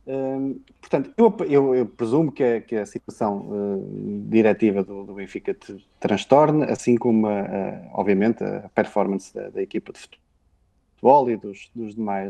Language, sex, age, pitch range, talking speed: Portuguese, male, 20-39, 115-145 Hz, 160 wpm